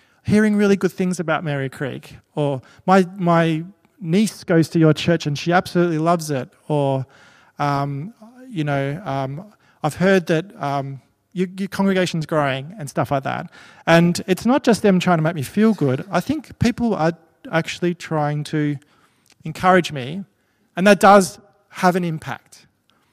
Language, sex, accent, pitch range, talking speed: English, male, Australian, 145-185 Hz, 165 wpm